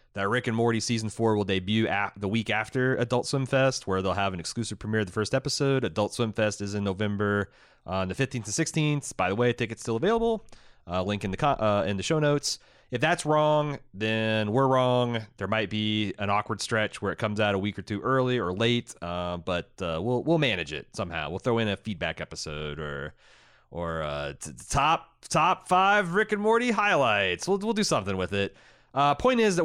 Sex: male